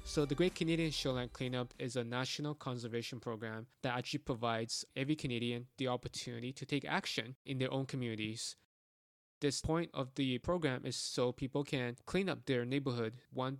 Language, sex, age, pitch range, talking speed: English, male, 20-39, 120-140 Hz, 170 wpm